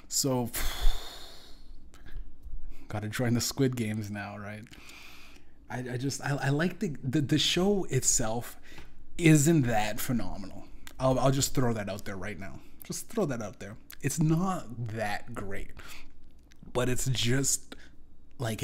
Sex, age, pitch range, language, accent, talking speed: male, 30-49, 110-130 Hz, English, American, 140 wpm